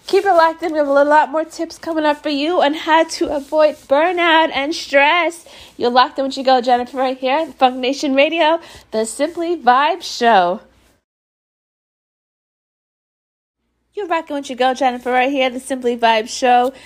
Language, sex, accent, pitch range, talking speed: English, female, American, 245-320 Hz, 180 wpm